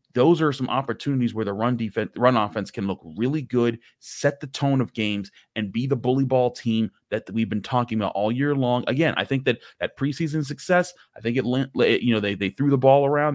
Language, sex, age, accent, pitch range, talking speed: English, male, 30-49, American, 110-140 Hz, 230 wpm